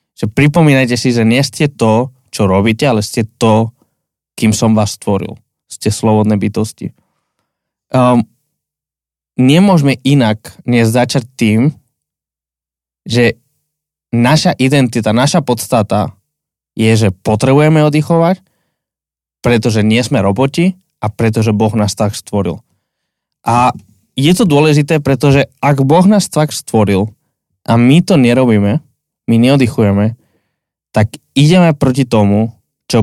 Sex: male